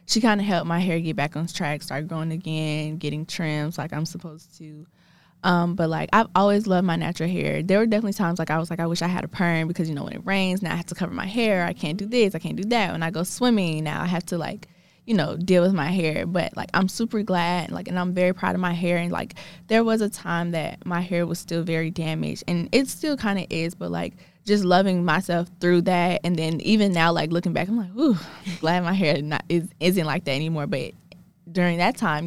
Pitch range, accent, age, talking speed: 165-195 Hz, American, 20-39, 260 wpm